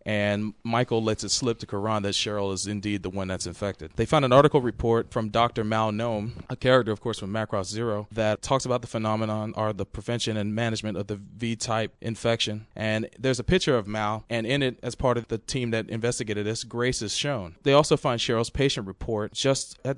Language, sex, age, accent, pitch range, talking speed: English, male, 30-49, American, 105-125 Hz, 220 wpm